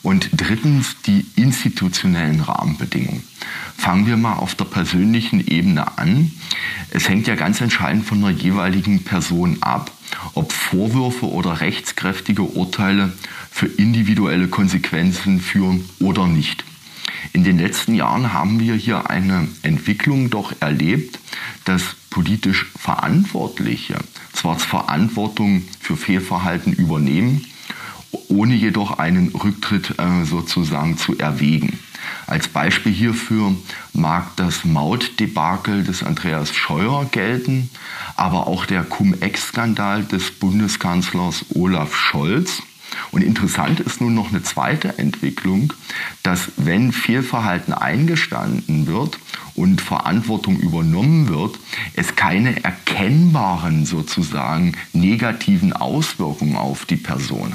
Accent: German